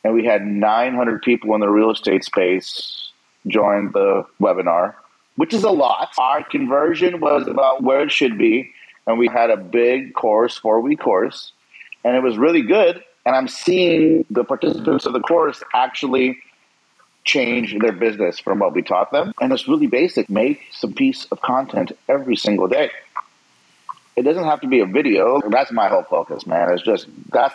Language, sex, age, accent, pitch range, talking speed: English, male, 40-59, American, 115-160 Hz, 180 wpm